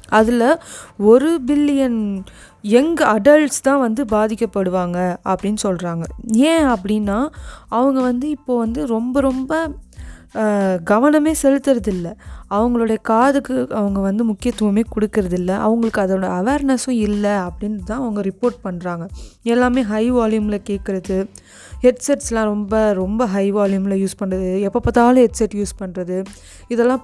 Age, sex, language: 20-39, female, Tamil